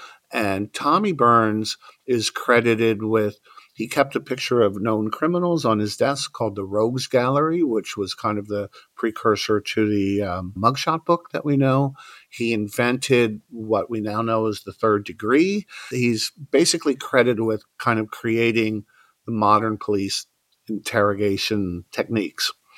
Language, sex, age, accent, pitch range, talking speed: English, male, 50-69, American, 110-130 Hz, 150 wpm